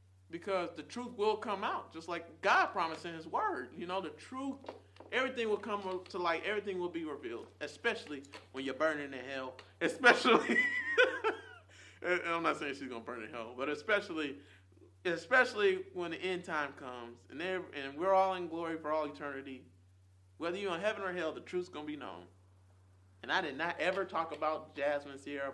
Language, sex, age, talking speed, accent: English, male, 30-49, 190 wpm, American